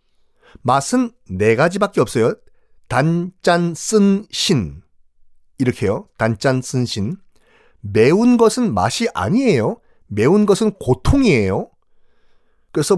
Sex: male